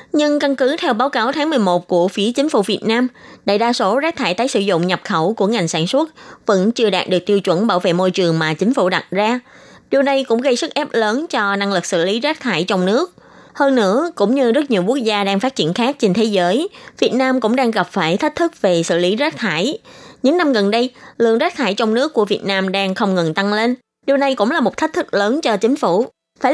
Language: Vietnamese